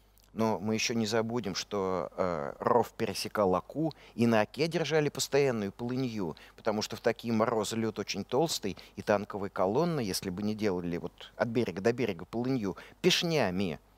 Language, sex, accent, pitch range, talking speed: Russian, male, native, 105-150 Hz, 165 wpm